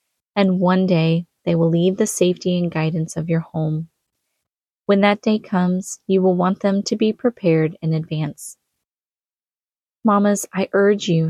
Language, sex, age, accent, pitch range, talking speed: English, female, 20-39, American, 165-195 Hz, 160 wpm